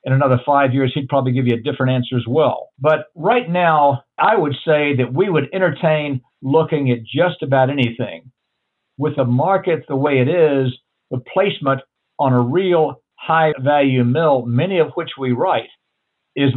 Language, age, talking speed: English, 50-69, 180 wpm